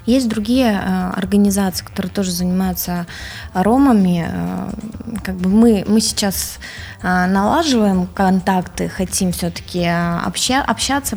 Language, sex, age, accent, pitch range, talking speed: Ukrainian, female, 20-39, native, 180-215 Hz, 115 wpm